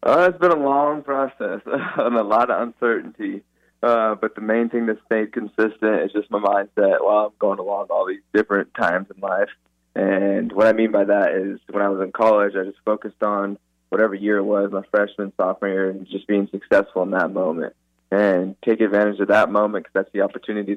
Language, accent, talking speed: English, American, 215 wpm